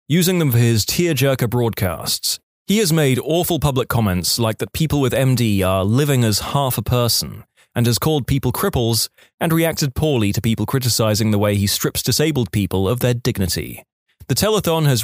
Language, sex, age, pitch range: English, male, 20-39, 105-140 Hz